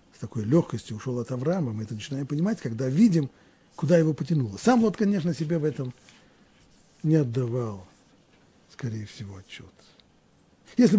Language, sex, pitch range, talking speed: Russian, male, 125-195 Hz, 140 wpm